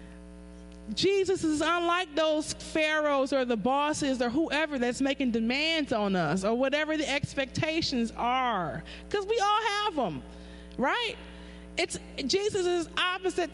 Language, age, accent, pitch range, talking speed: English, 30-49, American, 225-365 Hz, 135 wpm